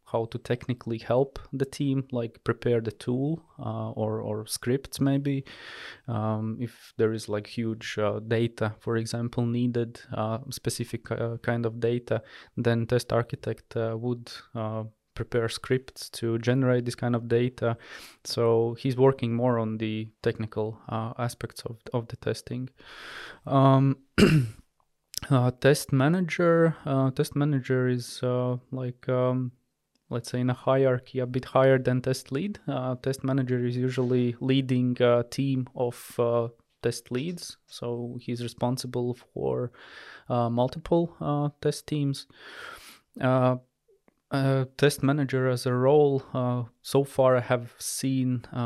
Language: English